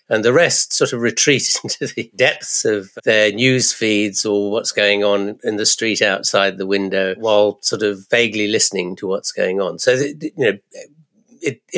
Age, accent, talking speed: 50-69, British, 180 wpm